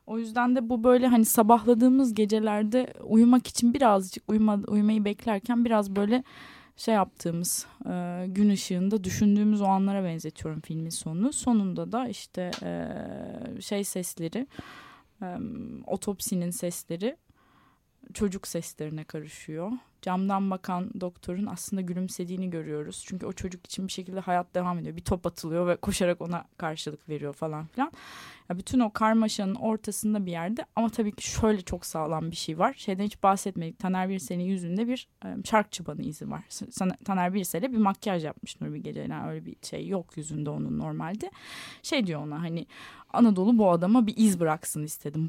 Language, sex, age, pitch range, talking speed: Turkish, female, 20-39, 170-220 Hz, 160 wpm